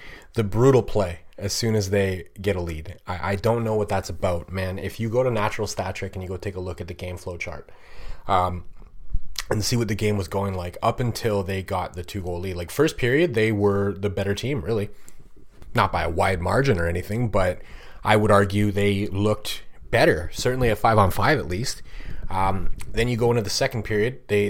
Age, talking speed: 30-49, 220 wpm